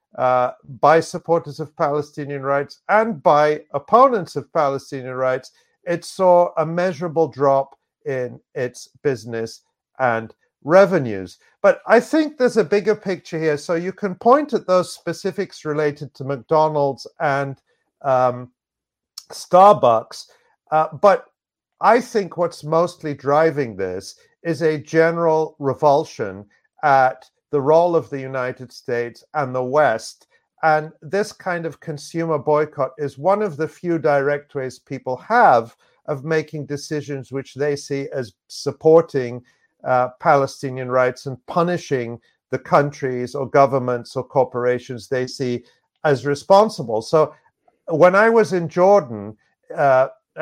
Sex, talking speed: male, 130 wpm